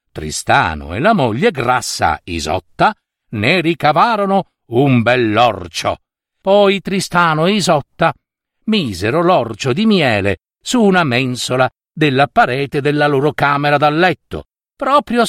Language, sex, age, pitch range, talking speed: Italian, male, 60-79, 115-185 Hz, 115 wpm